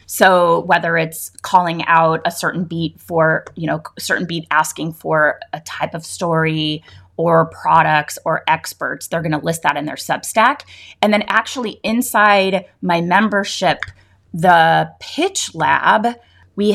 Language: English